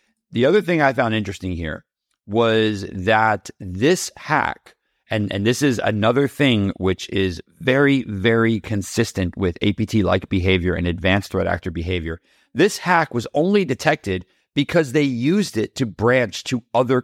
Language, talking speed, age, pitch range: English, 150 wpm, 40-59, 95-125 Hz